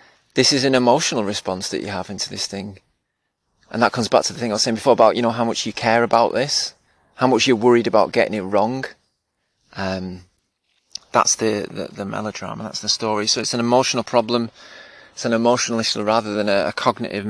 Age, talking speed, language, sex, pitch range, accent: 20-39, 215 wpm, English, male, 105-140 Hz, British